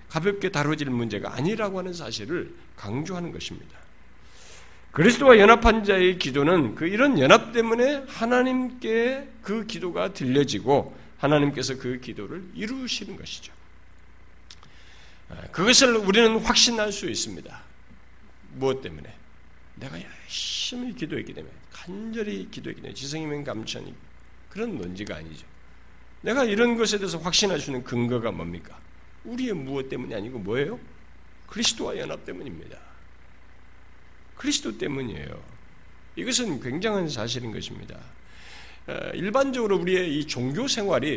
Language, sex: Korean, male